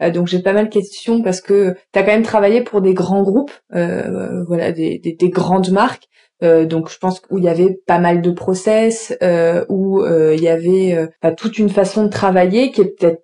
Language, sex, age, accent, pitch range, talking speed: French, female, 20-39, French, 185-215 Hz, 230 wpm